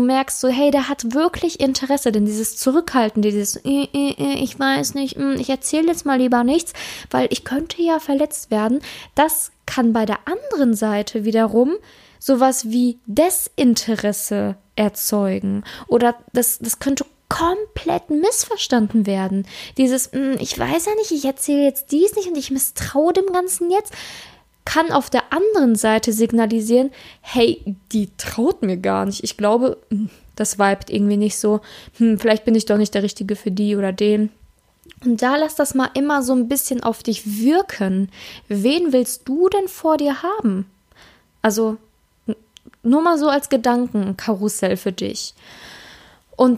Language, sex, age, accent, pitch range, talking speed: German, female, 10-29, German, 215-285 Hz, 155 wpm